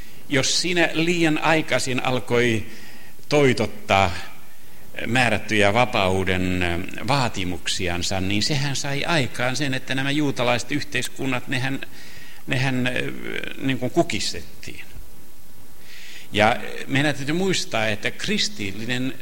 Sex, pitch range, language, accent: male, 95-155 Hz, Finnish, native